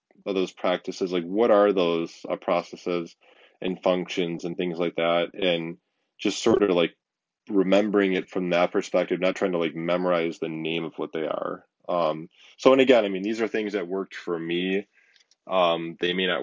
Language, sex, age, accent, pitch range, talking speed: English, male, 10-29, American, 85-100 Hz, 190 wpm